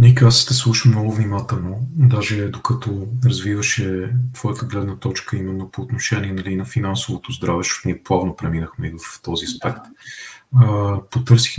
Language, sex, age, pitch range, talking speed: Bulgarian, male, 40-59, 95-125 Hz, 145 wpm